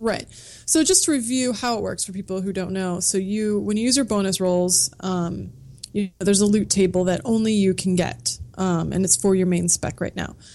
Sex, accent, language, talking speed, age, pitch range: female, American, English, 240 wpm, 20-39, 175-210 Hz